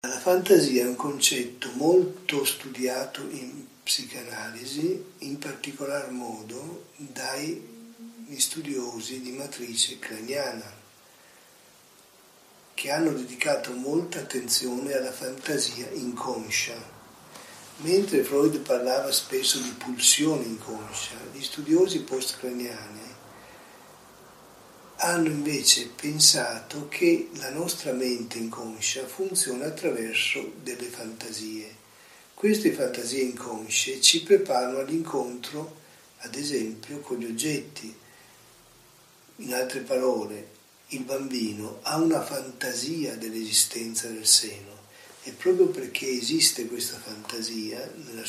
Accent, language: native, Italian